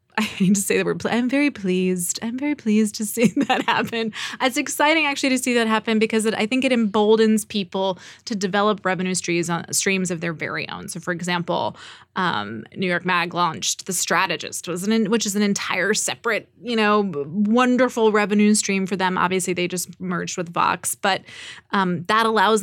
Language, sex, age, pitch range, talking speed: English, female, 20-39, 185-220 Hz, 190 wpm